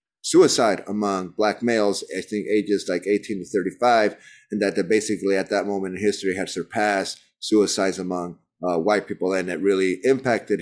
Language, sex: English, male